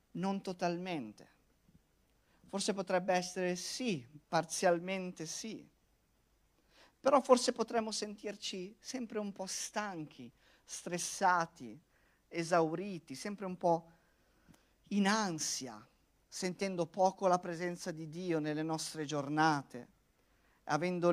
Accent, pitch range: native, 135-185 Hz